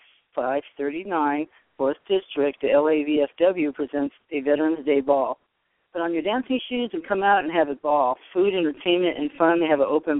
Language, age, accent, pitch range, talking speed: English, 50-69, American, 140-170 Hz, 175 wpm